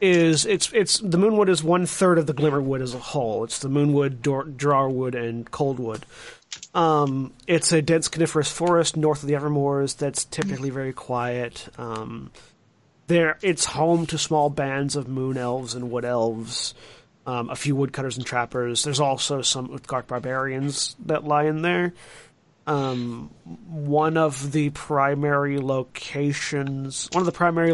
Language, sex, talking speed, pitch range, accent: English, male, 165 wpm, 130-160 Hz, American